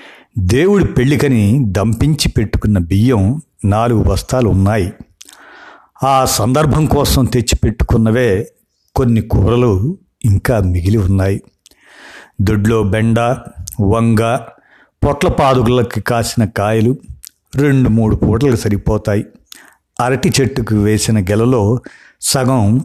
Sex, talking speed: male, 85 wpm